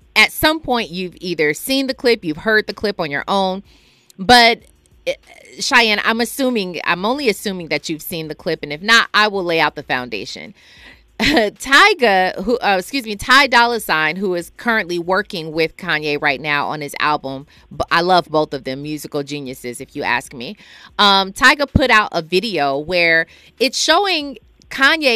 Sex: female